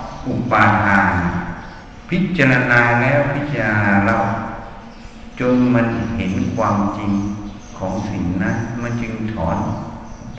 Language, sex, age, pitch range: Thai, male, 60-79, 100-125 Hz